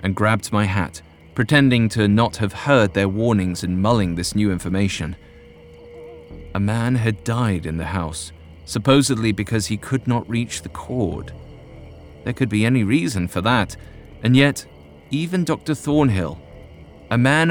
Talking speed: 155 wpm